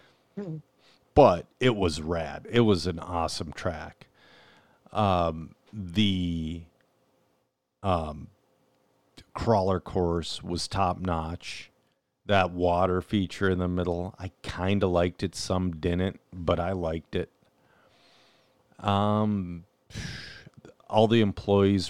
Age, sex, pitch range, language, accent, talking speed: 40-59, male, 90-110 Hz, English, American, 105 wpm